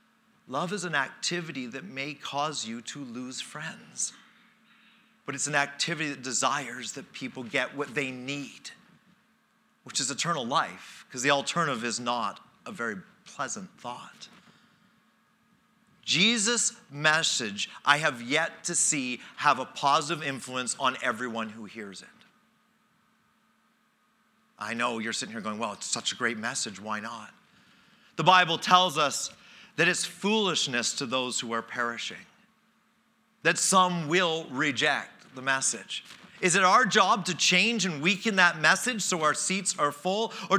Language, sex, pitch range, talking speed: English, male, 140-210 Hz, 150 wpm